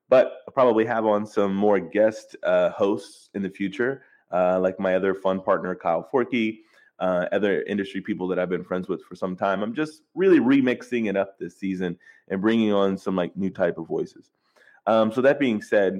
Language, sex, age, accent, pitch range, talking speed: English, male, 20-39, American, 95-125 Hz, 205 wpm